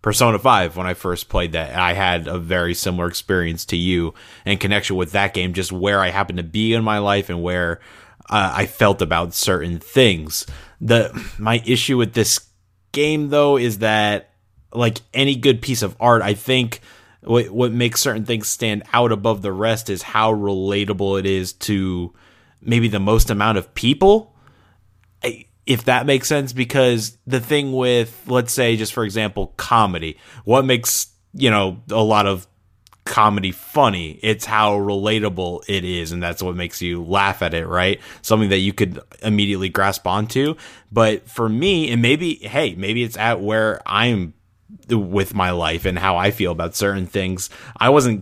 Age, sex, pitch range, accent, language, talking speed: 20-39, male, 95-115 Hz, American, English, 180 wpm